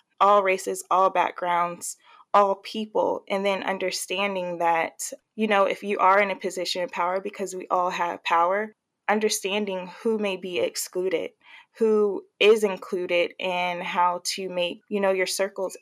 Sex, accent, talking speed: female, American, 155 wpm